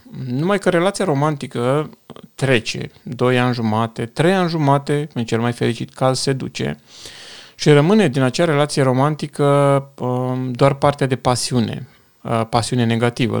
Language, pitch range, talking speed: Romanian, 120-140 Hz, 135 wpm